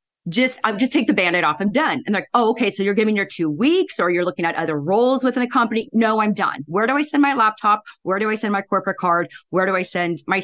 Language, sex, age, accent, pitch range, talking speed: English, female, 30-49, American, 180-245 Hz, 285 wpm